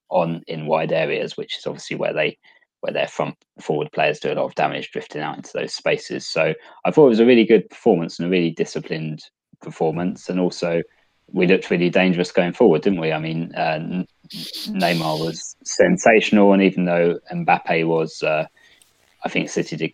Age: 20-39